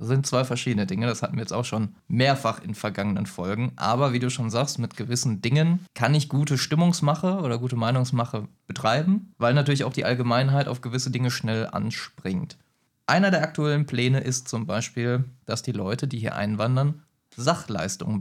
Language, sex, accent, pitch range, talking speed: German, male, German, 110-135 Hz, 180 wpm